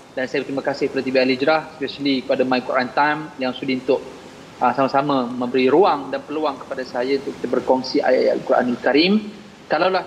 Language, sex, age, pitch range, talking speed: Malayalam, male, 30-49, 145-220 Hz, 185 wpm